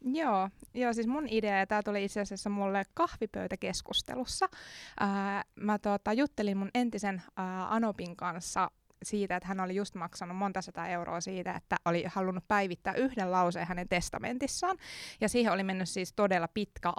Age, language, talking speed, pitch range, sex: 20-39, Finnish, 165 wpm, 185-230 Hz, female